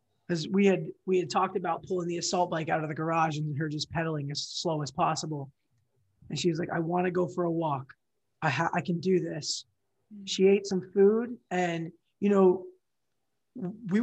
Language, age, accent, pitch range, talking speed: English, 20-39, American, 150-185 Hz, 205 wpm